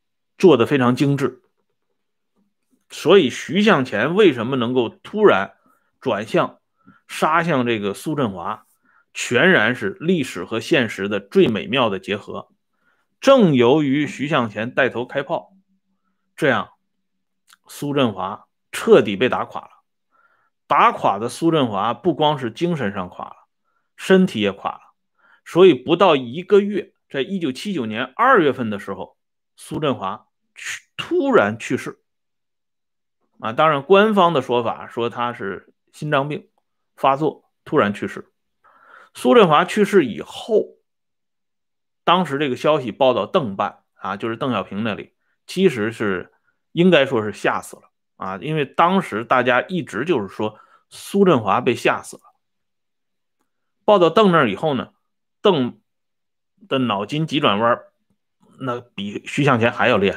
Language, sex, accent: Swedish, male, Chinese